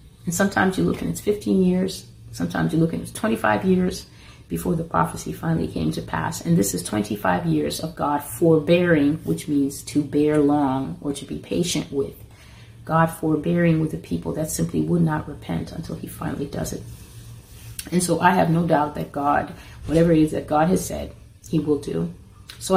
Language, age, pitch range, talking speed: English, 30-49, 115-170 Hz, 195 wpm